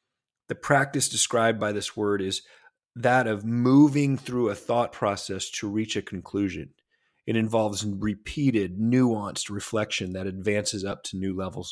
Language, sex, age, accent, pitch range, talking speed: English, male, 40-59, American, 100-125 Hz, 150 wpm